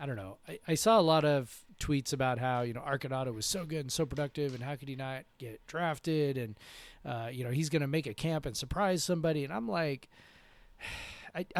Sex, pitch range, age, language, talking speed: male, 125-155 Hz, 30-49, English, 235 wpm